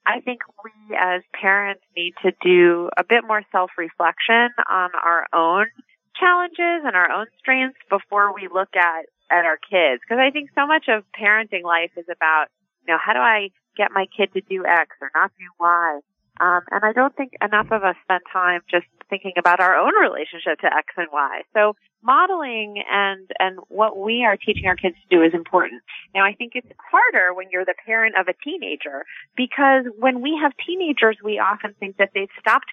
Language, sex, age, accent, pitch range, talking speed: English, female, 30-49, American, 175-235 Hz, 200 wpm